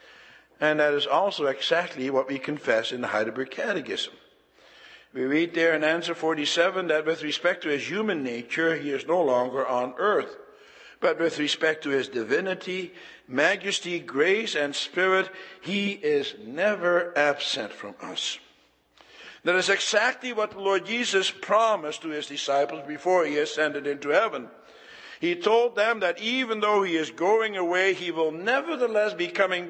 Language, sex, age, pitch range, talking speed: English, male, 60-79, 150-200 Hz, 160 wpm